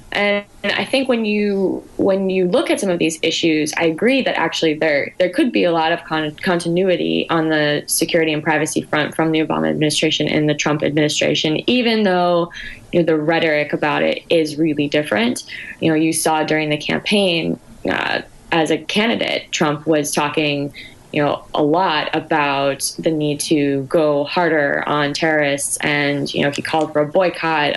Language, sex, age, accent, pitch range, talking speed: English, female, 20-39, American, 150-175 Hz, 185 wpm